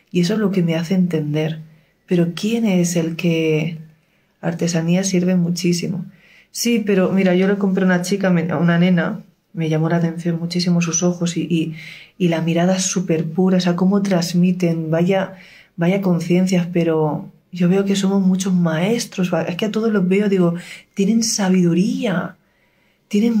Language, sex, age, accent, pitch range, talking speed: Spanish, female, 40-59, Spanish, 170-205 Hz, 170 wpm